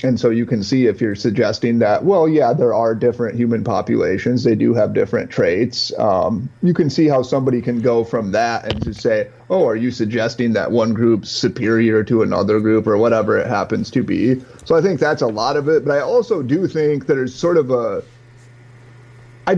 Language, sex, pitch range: English, male, 120-160 Hz